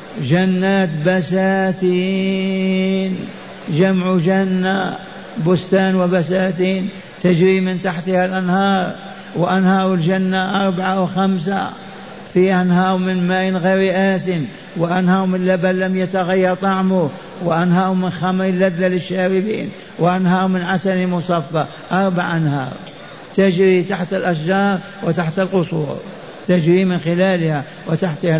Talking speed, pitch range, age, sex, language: 95 wpm, 185-190 Hz, 60-79, male, Arabic